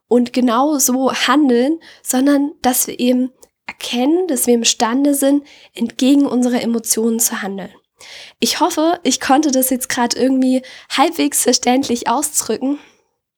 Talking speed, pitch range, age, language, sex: 130 wpm, 235-275 Hz, 10-29, German, female